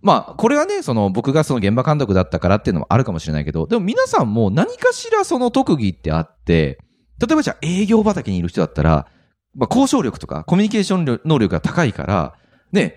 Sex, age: male, 30-49